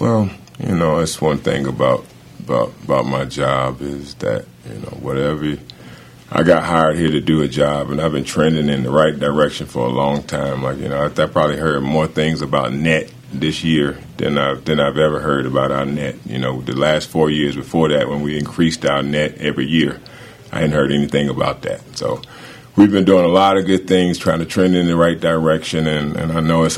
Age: 40-59